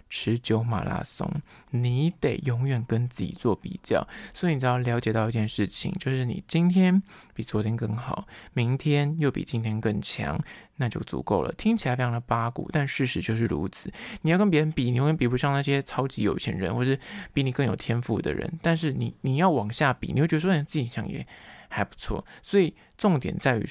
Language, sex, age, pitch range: Chinese, male, 20-39, 120-155 Hz